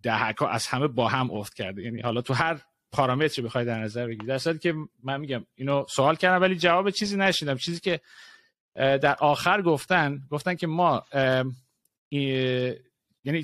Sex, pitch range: male, 125-155 Hz